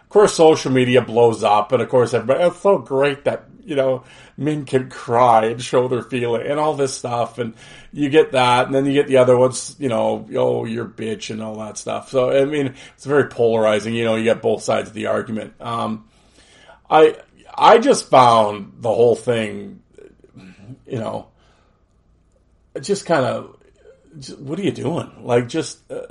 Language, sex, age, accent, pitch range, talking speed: English, male, 40-59, American, 120-155 Hz, 190 wpm